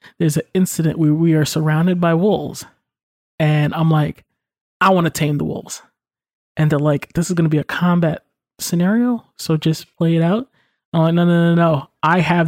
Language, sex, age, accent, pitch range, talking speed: English, male, 20-39, American, 155-195 Hz, 200 wpm